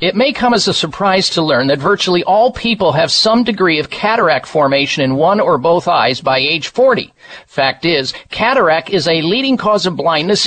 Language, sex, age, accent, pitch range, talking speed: English, male, 50-69, American, 180-240 Hz, 200 wpm